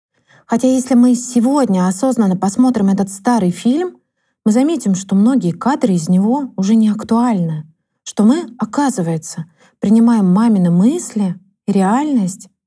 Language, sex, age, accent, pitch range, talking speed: Russian, female, 30-49, native, 185-245 Hz, 130 wpm